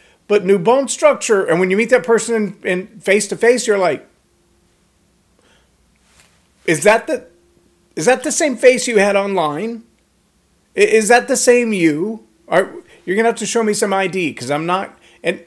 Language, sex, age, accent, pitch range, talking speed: English, male, 40-59, American, 150-220 Hz, 175 wpm